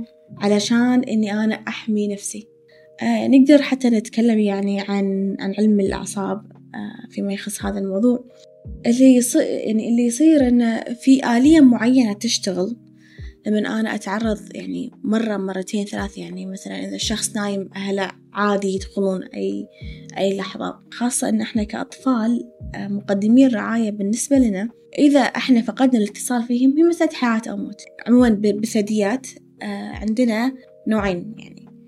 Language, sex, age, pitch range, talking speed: Arabic, female, 20-39, 200-245 Hz, 130 wpm